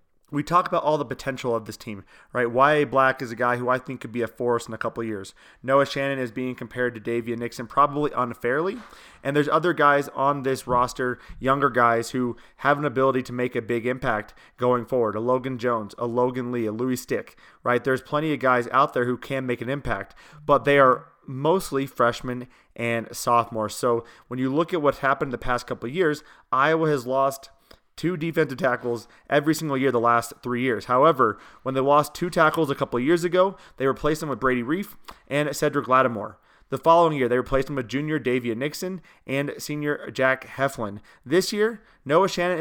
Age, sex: 30-49, male